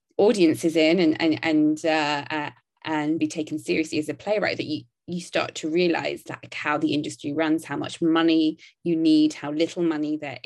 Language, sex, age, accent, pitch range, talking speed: English, female, 20-39, British, 150-175 Hz, 195 wpm